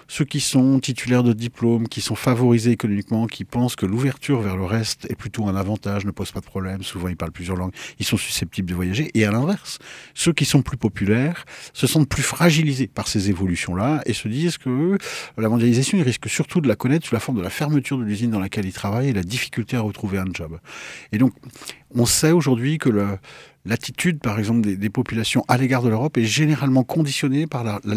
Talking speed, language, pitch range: 225 wpm, French, 100-130 Hz